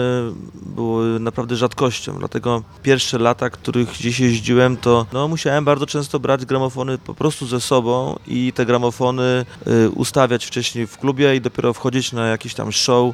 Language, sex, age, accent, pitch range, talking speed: English, male, 30-49, Polish, 120-135 Hz, 155 wpm